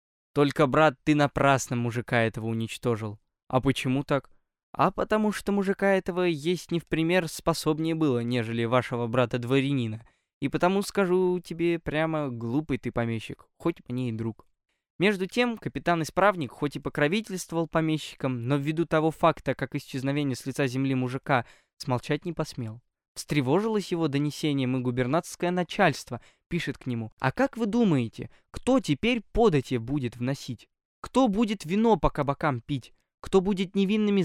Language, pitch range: Russian, 125-175 Hz